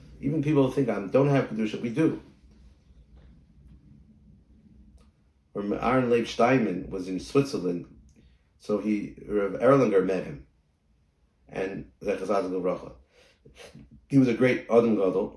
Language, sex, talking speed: English, male, 115 wpm